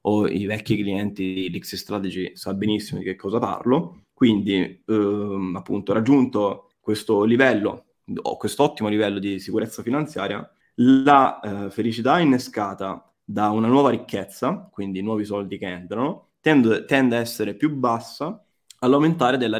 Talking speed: 135 wpm